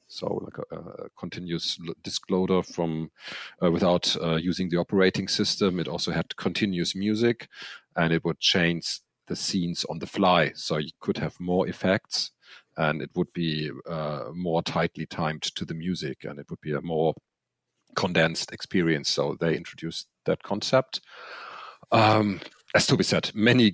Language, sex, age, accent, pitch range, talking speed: English, male, 40-59, German, 80-95 Hz, 165 wpm